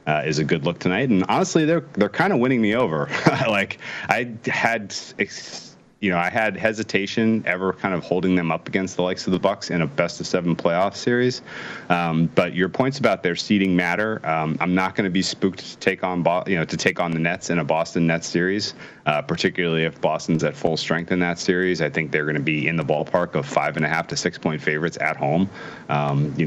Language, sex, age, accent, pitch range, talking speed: English, male, 30-49, American, 75-95 Hz, 240 wpm